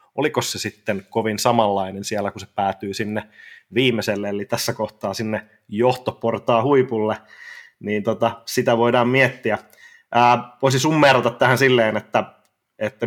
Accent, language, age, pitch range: Finnish, English, 30-49, 105-125 Hz